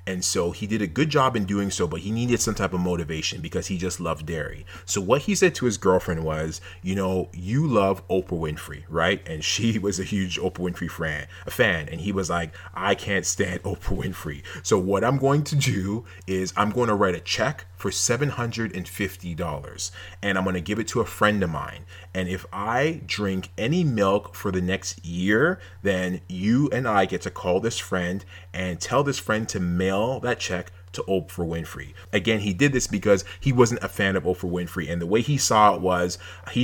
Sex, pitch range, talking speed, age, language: male, 90-105 Hz, 220 wpm, 30-49, English